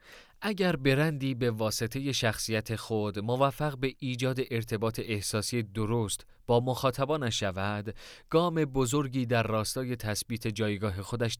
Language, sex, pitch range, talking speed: Persian, male, 110-135 Hz, 115 wpm